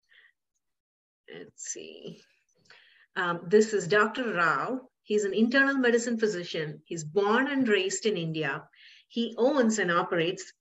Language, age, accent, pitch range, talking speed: English, 50-69, Indian, 175-225 Hz, 125 wpm